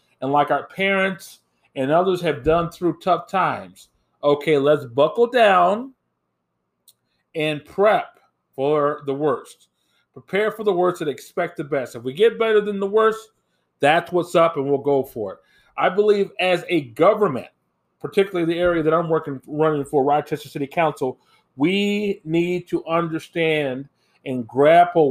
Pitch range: 135-180 Hz